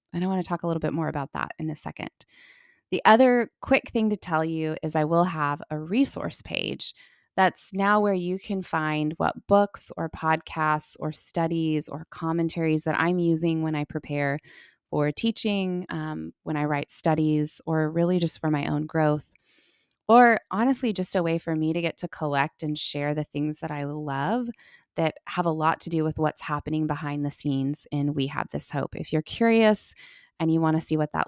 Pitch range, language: 150-180 Hz, English